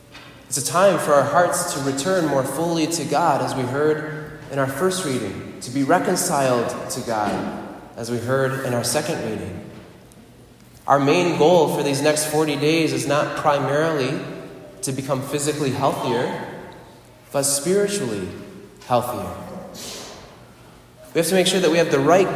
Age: 20-39